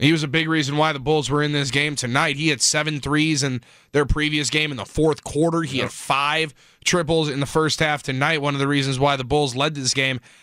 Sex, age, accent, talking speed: male, 20-39, American, 255 wpm